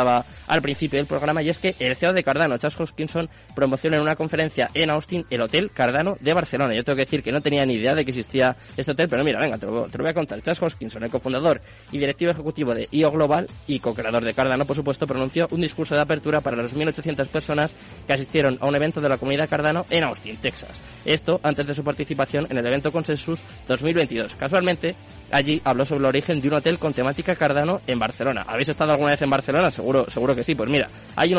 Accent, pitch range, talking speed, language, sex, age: Spanish, 130-155 Hz, 235 wpm, Spanish, male, 20-39